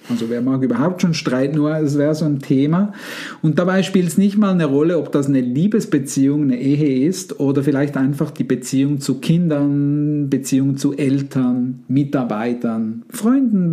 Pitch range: 135-180 Hz